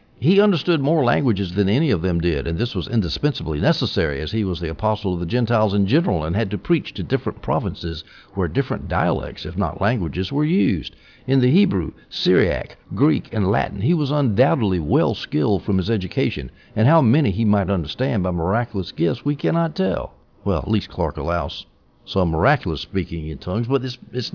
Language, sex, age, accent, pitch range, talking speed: English, male, 60-79, American, 90-125 Hz, 190 wpm